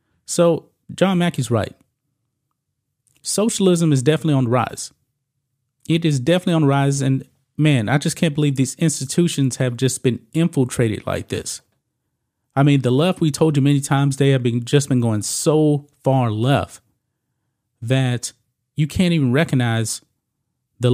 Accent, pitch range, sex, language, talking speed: American, 125-160 Hz, male, English, 155 wpm